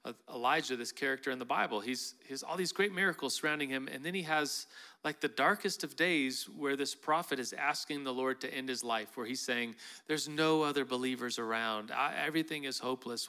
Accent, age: American, 40-59